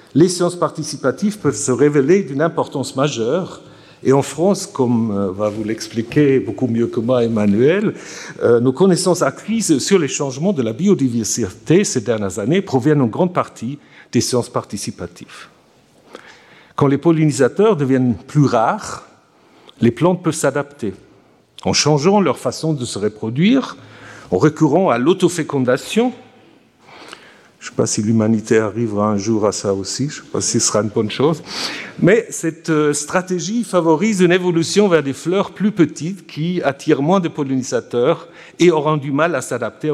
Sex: male